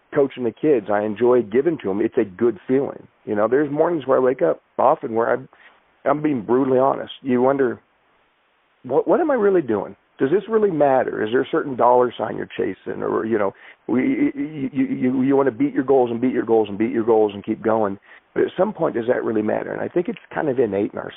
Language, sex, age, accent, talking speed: English, male, 40-59, American, 250 wpm